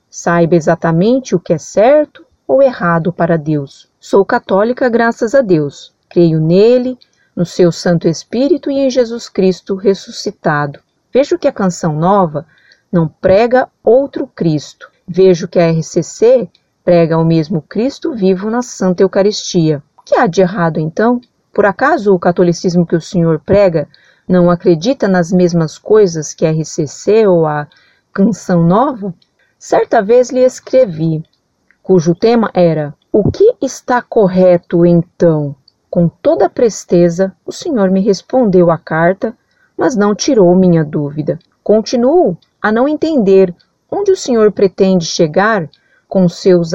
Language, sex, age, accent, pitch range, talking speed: Portuguese, female, 40-59, Brazilian, 170-225 Hz, 140 wpm